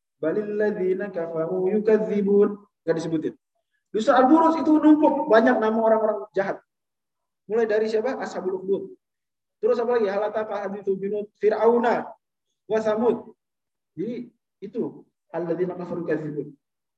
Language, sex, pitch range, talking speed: Indonesian, male, 170-220 Hz, 80 wpm